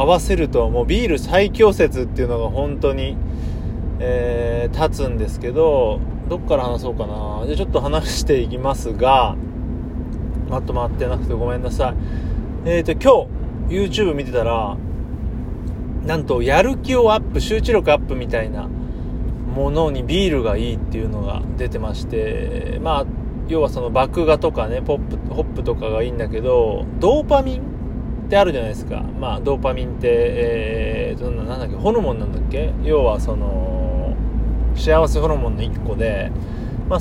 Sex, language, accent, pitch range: male, Japanese, native, 110-160 Hz